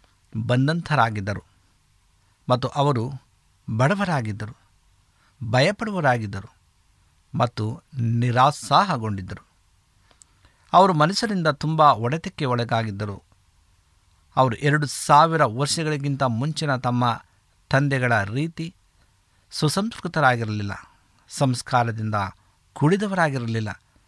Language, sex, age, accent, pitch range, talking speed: Kannada, male, 60-79, native, 100-145 Hz, 55 wpm